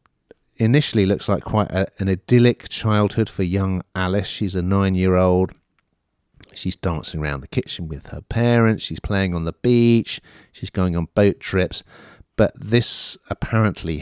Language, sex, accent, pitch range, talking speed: English, male, British, 85-110 Hz, 150 wpm